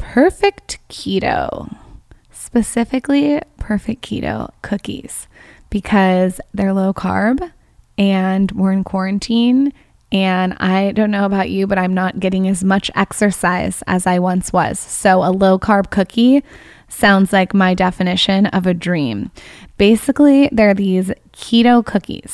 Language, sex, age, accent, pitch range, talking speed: English, female, 20-39, American, 190-220 Hz, 130 wpm